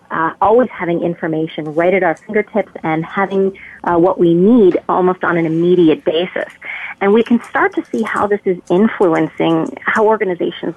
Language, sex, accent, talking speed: English, female, American, 175 wpm